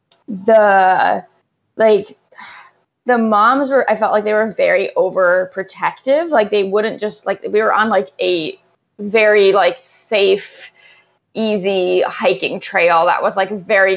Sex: female